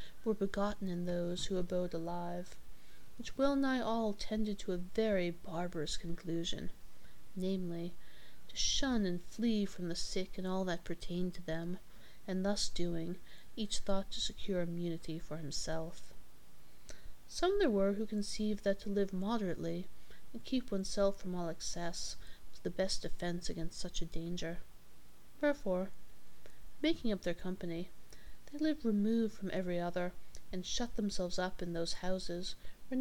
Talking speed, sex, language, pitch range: 150 wpm, female, English, 175-215 Hz